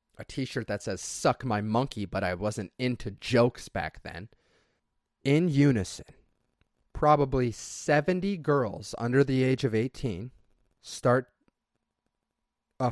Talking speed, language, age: 120 wpm, English, 30-49